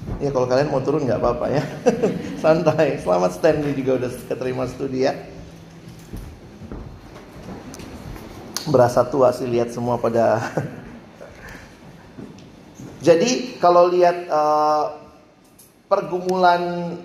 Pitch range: 135-175 Hz